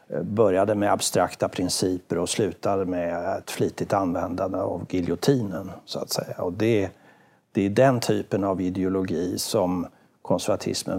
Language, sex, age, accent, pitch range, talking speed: Swedish, male, 60-79, native, 100-130 Hz, 115 wpm